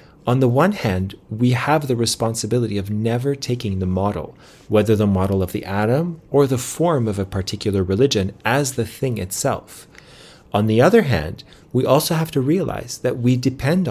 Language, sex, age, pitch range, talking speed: English, male, 40-59, 95-125 Hz, 180 wpm